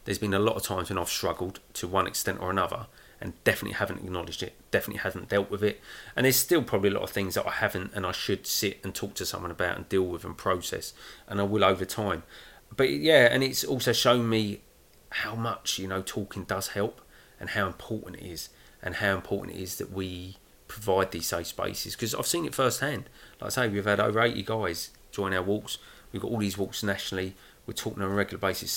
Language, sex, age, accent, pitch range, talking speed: English, male, 30-49, British, 95-115 Hz, 235 wpm